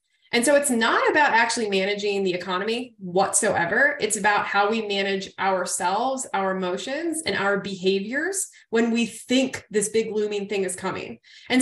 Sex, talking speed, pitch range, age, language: female, 160 wpm, 195-255 Hz, 20-39, English